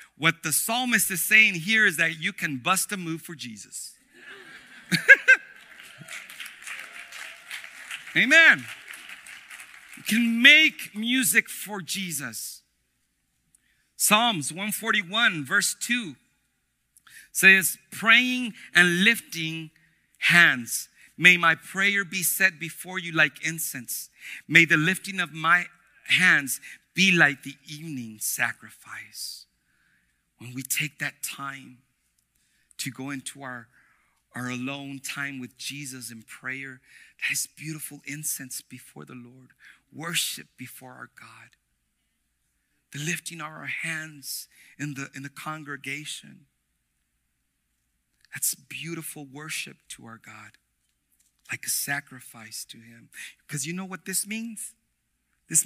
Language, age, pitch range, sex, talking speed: English, 50-69, 130-190 Hz, male, 110 wpm